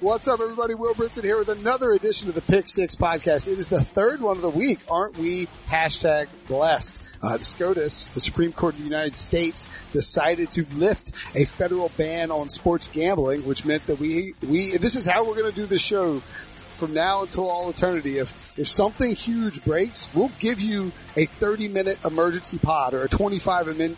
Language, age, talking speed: English, 30-49, 200 wpm